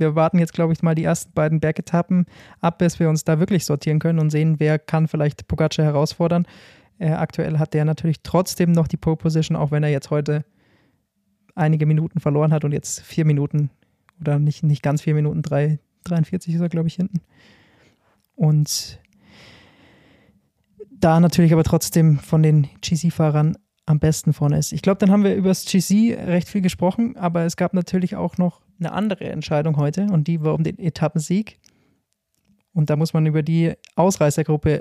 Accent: German